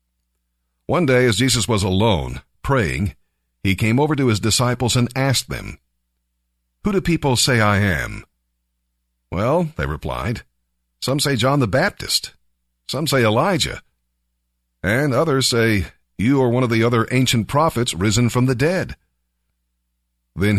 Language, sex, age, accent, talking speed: English, male, 50-69, American, 145 wpm